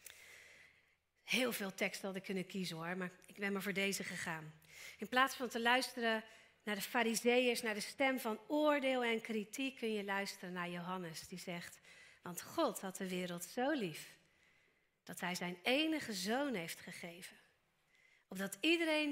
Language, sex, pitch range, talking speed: Dutch, female, 175-225 Hz, 165 wpm